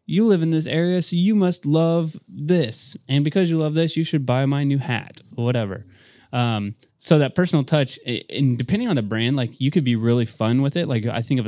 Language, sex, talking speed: English, male, 230 wpm